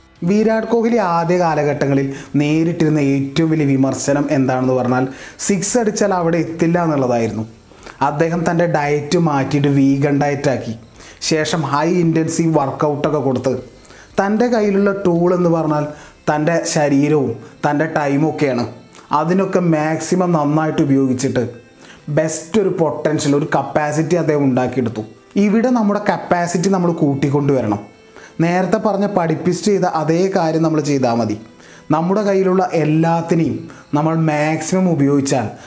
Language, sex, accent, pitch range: Malayalam, male, native, 140-185 Hz